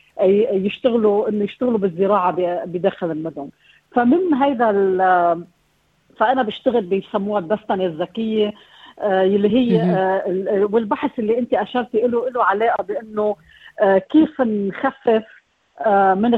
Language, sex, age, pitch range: Arabic, female, 40-59, 195-235 Hz